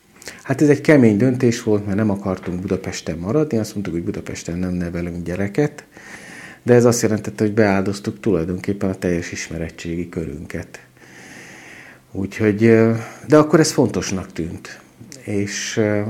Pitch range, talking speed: 90-110 Hz, 135 wpm